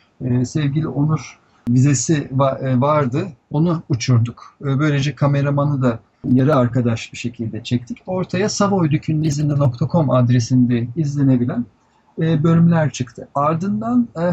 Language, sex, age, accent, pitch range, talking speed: Turkish, male, 50-69, native, 125-165 Hz, 90 wpm